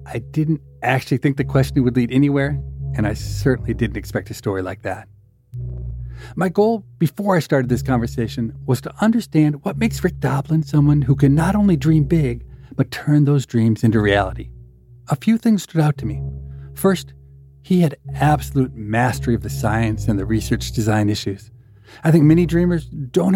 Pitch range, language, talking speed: 110-145 Hz, English, 180 wpm